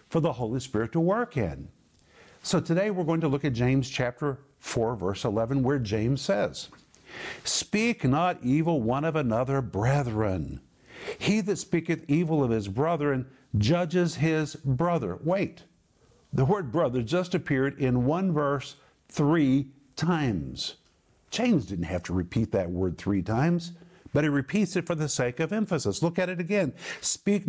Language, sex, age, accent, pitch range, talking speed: English, male, 50-69, American, 130-170 Hz, 160 wpm